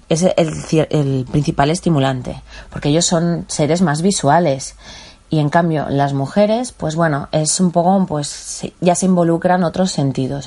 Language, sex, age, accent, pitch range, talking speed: Spanish, female, 20-39, Spanish, 140-185 Hz, 155 wpm